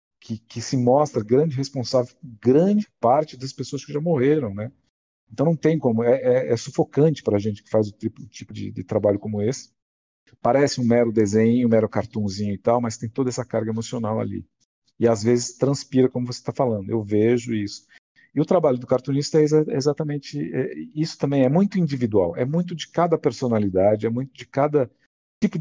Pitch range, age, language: 105-135 Hz, 50-69, Portuguese